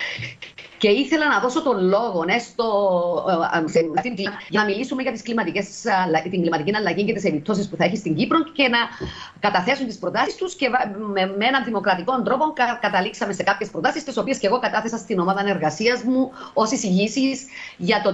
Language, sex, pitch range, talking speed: Greek, female, 185-235 Hz, 155 wpm